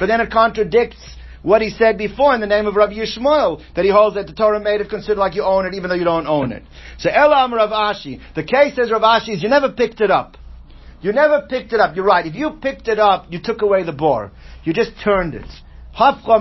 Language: English